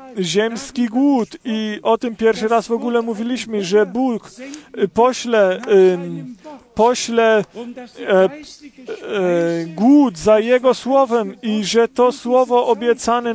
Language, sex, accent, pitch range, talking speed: Polish, male, native, 225-260 Hz, 105 wpm